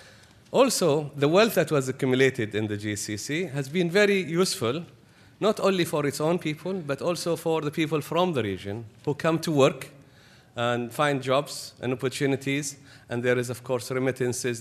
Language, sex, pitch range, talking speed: English, male, 110-140 Hz, 175 wpm